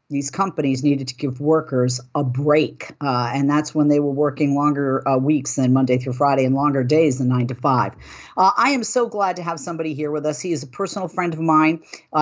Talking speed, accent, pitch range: 230 wpm, American, 140-185 Hz